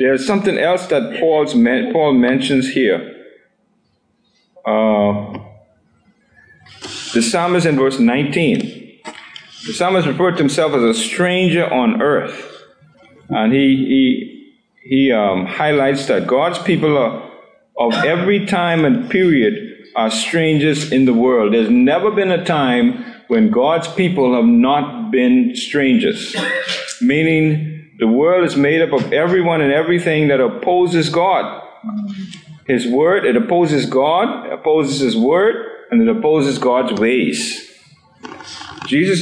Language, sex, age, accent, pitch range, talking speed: English, male, 50-69, American, 140-220 Hz, 125 wpm